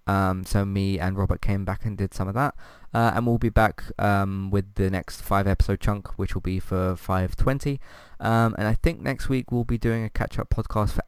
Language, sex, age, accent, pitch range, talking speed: English, male, 20-39, British, 95-125 Hz, 220 wpm